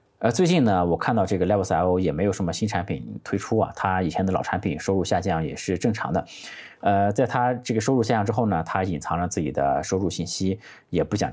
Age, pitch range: 20-39, 90-115 Hz